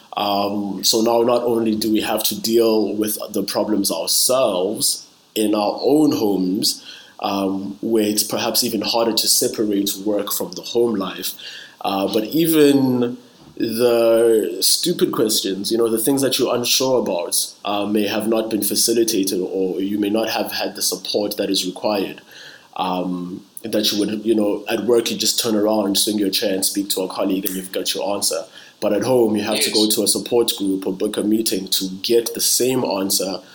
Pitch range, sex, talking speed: 100-115 Hz, male, 195 wpm